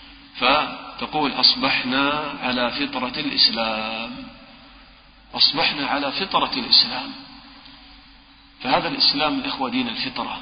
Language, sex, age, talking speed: English, male, 40-59, 75 wpm